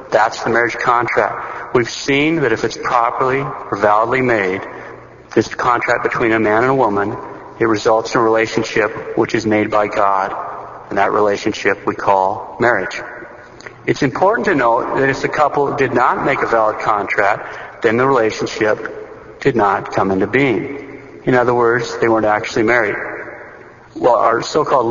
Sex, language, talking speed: male, English, 165 wpm